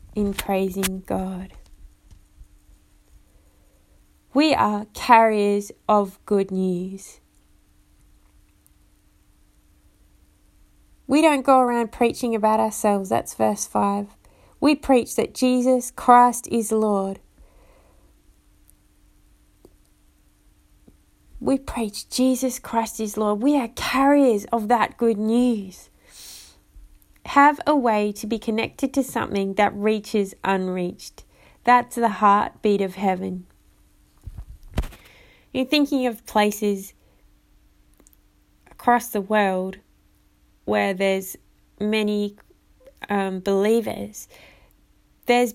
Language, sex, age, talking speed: English, female, 20-39, 90 wpm